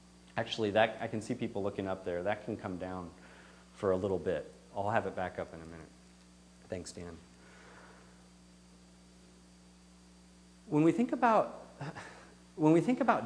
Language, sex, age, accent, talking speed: English, male, 40-59, American, 160 wpm